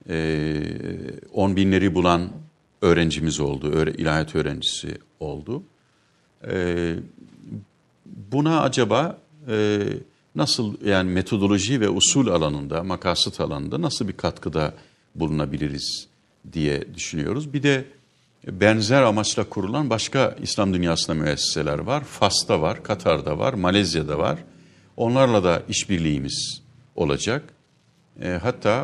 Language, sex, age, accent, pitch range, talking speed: Turkish, male, 50-69, native, 80-105 Hz, 100 wpm